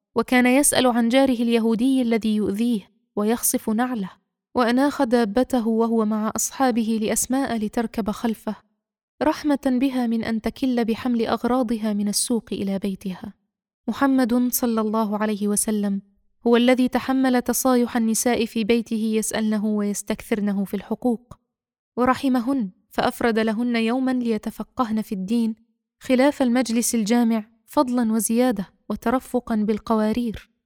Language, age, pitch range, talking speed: Arabic, 20-39, 215-245 Hz, 115 wpm